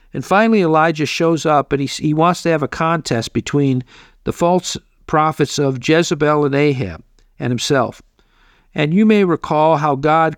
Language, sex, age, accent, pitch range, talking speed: English, male, 50-69, American, 135-170 Hz, 170 wpm